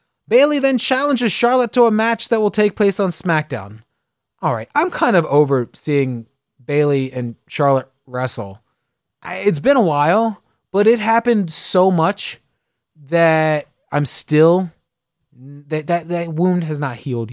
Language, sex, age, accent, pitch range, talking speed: English, male, 30-49, American, 145-200 Hz, 150 wpm